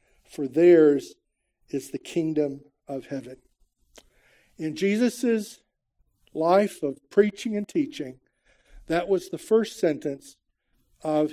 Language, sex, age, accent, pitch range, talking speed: English, male, 50-69, American, 145-215 Hz, 105 wpm